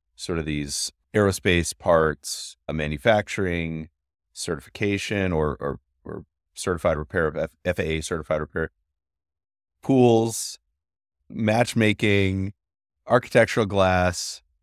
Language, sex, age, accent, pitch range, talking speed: English, male, 30-49, American, 75-95 Hz, 85 wpm